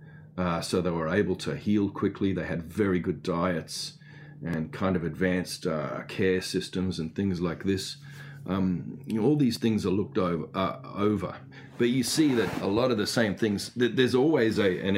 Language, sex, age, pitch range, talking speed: English, male, 40-59, 85-105 Hz, 195 wpm